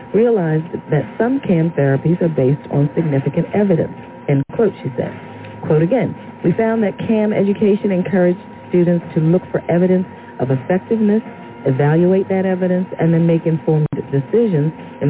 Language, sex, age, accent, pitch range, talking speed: English, female, 40-59, American, 145-195 Hz, 150 wpm